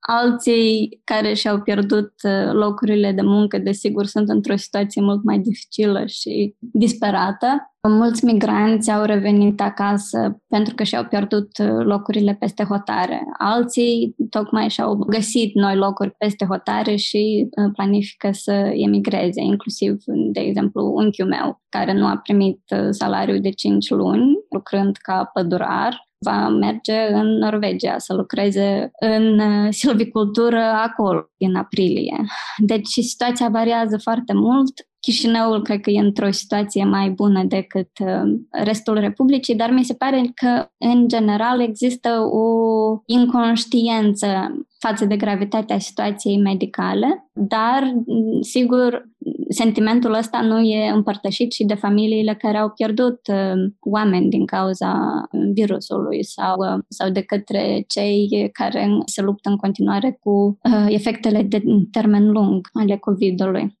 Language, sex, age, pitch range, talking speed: Romanian, female, 20-39, 200-230 Hz, 125 wpm